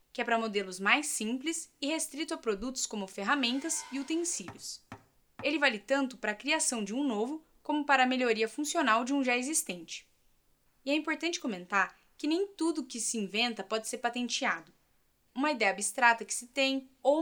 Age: 10-29